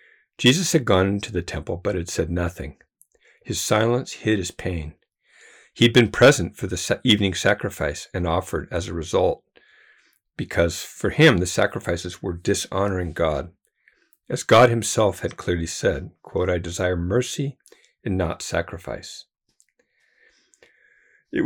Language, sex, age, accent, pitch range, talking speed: English, male, 50-69, American, 85-115 Hz, 140 wpm